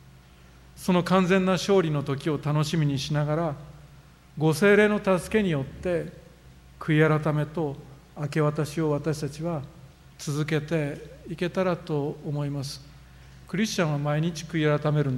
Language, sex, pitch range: Japanese, male, 135-175 Hz